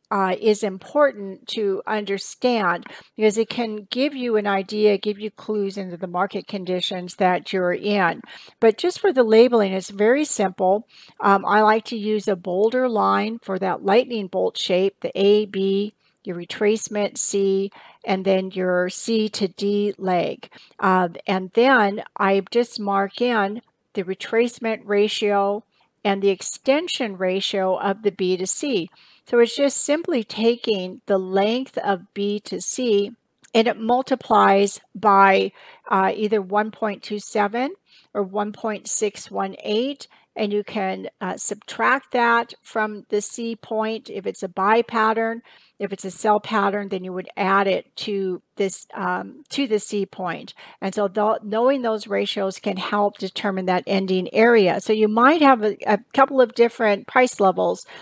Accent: American